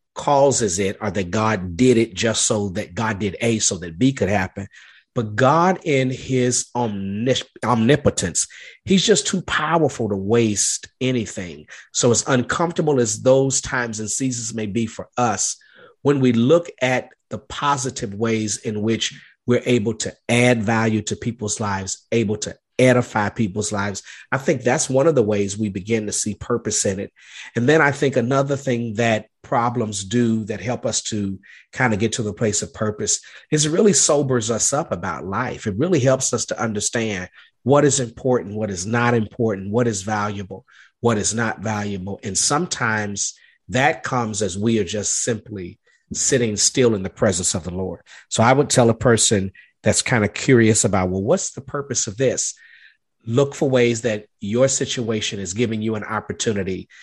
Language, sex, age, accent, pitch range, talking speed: English, male, 40-59, American, 105-125 Hz, 180 wpm